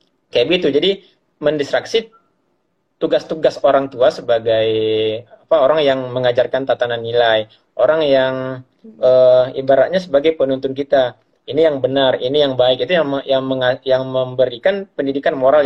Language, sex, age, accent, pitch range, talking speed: Indonesian, male, 20-39, native, 125-170 Hz, 135 wpm